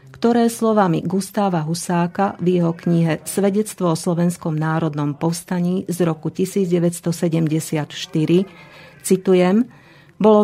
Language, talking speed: Slovak, 100 wpm